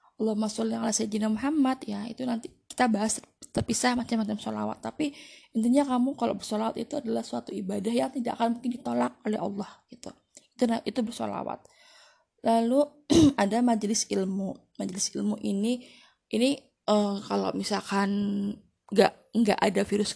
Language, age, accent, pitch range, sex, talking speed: Indonesian, 20-39, native, 205-250 Hz, female, 140 wpm